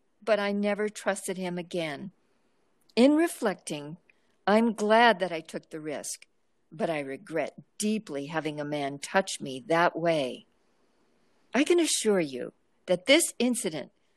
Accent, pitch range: American, 170-230 Hz